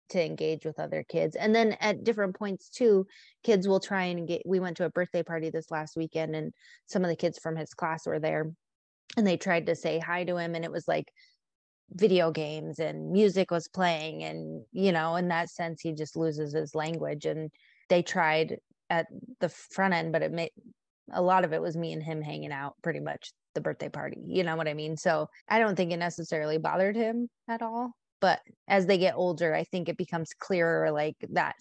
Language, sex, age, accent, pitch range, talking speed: English, female, 20-39, American, 160-190 Hz, 220 wpm